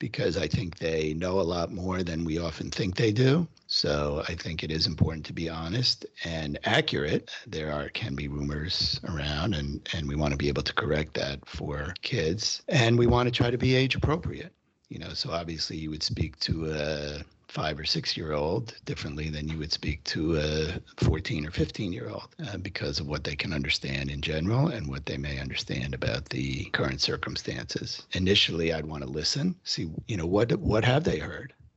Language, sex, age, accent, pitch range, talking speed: English, male, 50-69, American, 75-105 Hz, 210 wpm